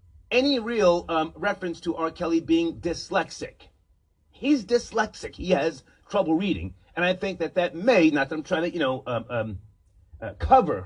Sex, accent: male, American